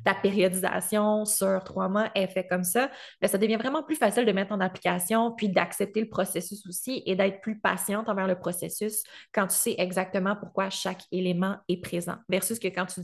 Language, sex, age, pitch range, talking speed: French, female, 20-39, 185-220 Hz, 200 wpm